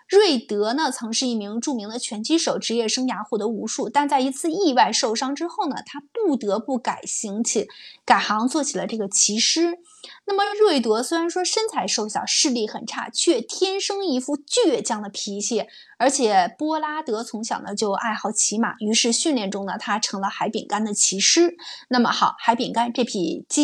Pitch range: 220-320 Hz